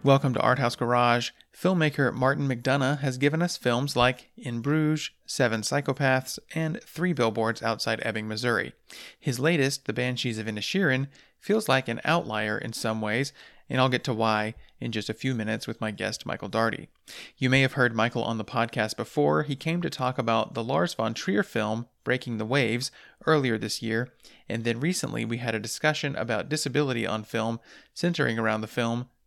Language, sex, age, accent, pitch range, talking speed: English, male, 30-49, American, 115-140 Hz, 185 wpm